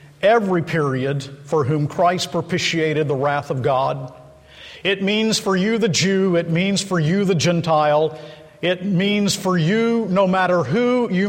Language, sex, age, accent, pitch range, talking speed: English, male, 50-69, American, 165-215 Hz, 160 wpm